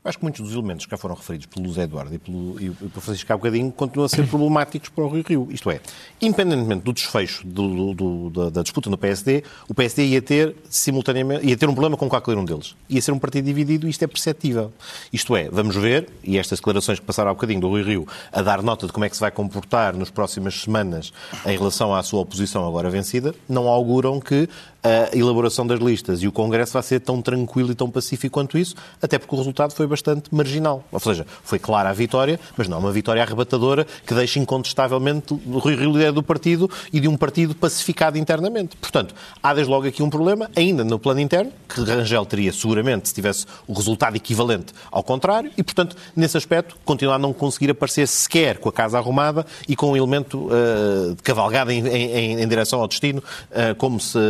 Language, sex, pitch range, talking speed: Portuguese, male, 105-150 Hz, 225 wpm